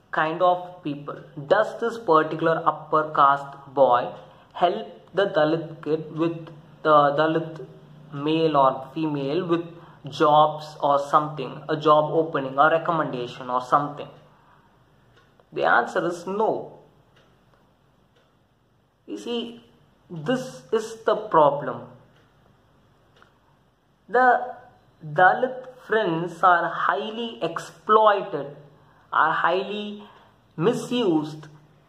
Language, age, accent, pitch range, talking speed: English, 20-39, Indian, 150-190 Hz, 90 wpm